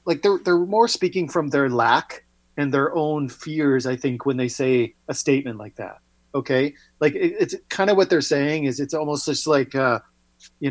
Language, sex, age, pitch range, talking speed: English, male, 40-59, 130-180 Hz, 205 wpm